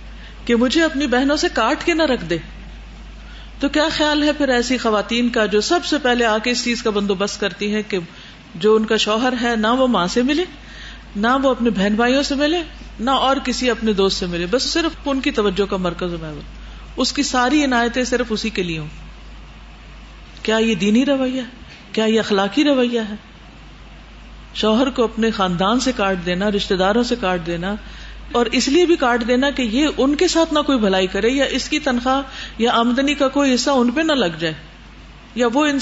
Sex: female